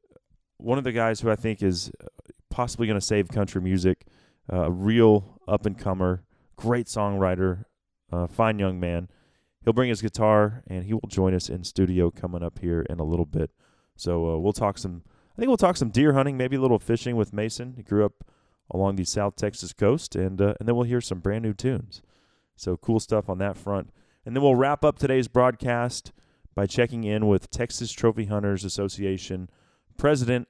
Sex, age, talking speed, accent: male, 30-49, 195 wpm, American